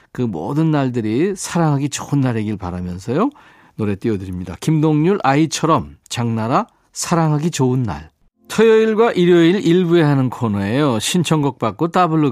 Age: 40-59